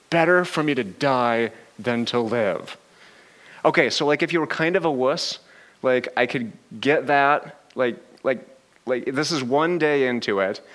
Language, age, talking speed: English, 30-49, 180 wpm